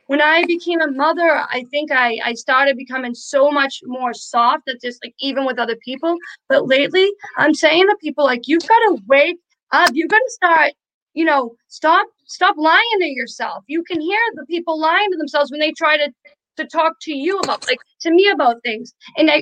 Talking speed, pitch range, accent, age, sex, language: 205 wpm, 265-325 Hz, American, 20-39, female, English